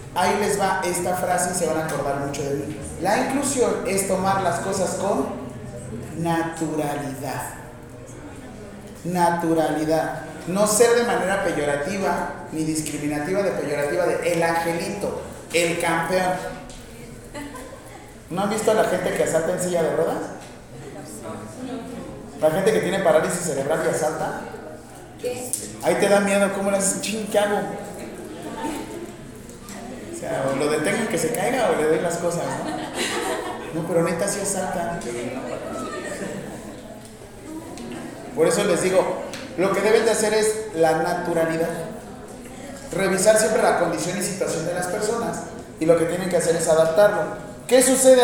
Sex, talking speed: male, 140 wpm